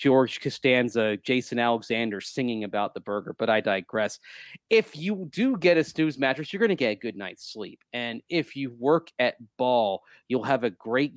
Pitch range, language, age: 115-155 Hz, English, 30-49